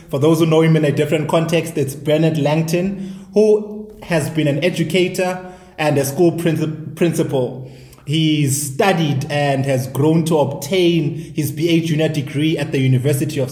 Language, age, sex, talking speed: English, 20-39, male, 165 wpm